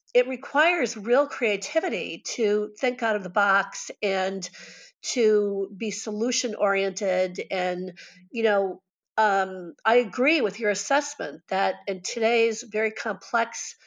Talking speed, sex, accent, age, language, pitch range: 125 wpm, female, American, 50-69, English, 200-245 Hz